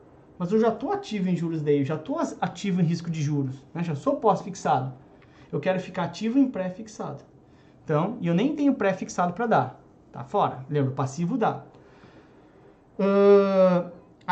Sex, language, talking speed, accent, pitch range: male, Portuguese, 170 wpm, Brazilian, 155-220 Hz